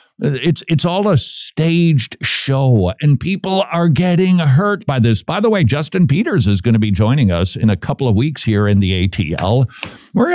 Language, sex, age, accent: English, male, 50-69, American